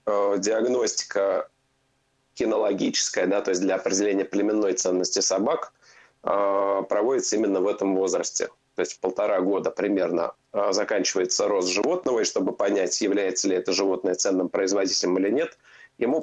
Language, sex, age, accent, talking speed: Russian, male, 30-49, native, 130 wpm